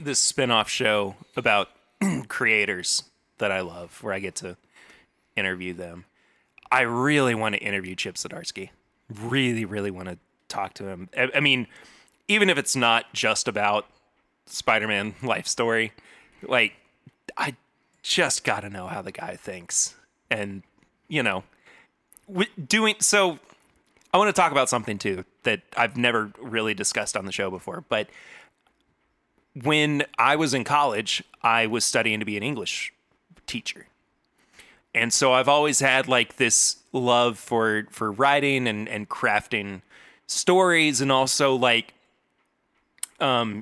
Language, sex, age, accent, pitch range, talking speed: English, male, 30-49, American, 110-140 Hz, 145 wpm